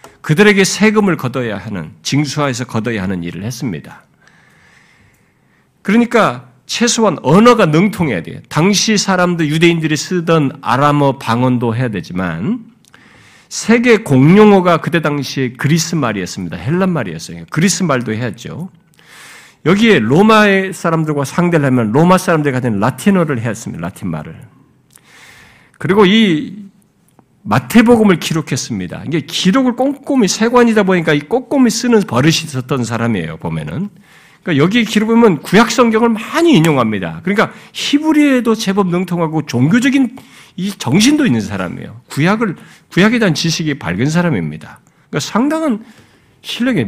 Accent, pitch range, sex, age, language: native, 140-220 Hz, male, 50-69, Korean